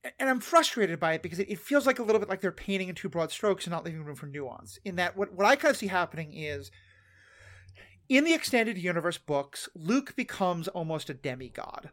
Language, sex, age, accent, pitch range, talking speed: English, male, 30-49, American, 155-210 Hz, 225 wpm